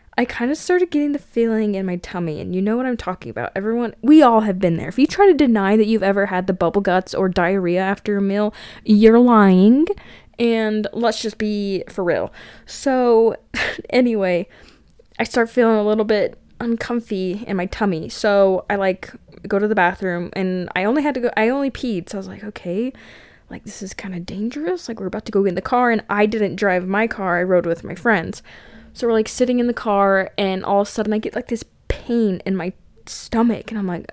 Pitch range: 190-235 Hz